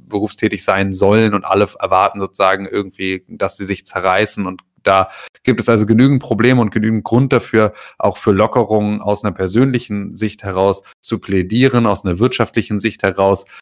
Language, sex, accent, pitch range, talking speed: German, male, German, 95-105 Hz, 170 wpm